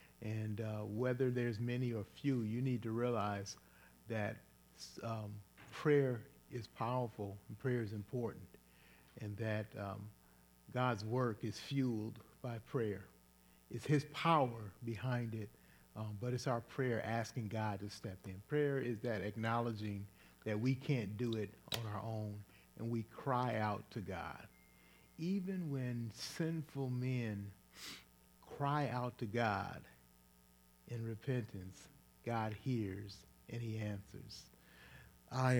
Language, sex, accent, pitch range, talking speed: English, male, American, 100-120 Hz, 130 wpm